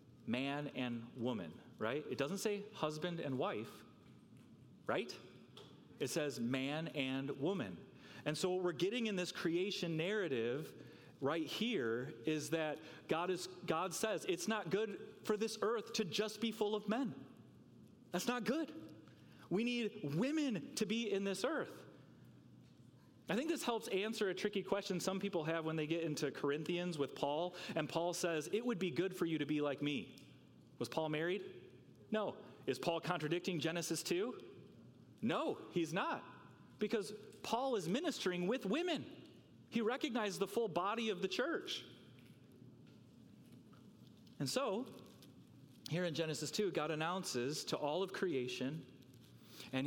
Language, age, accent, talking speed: English, 30-49, American, 150 wpm